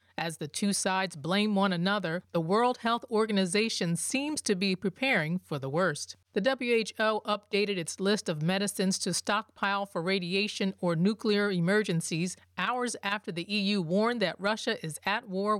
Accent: American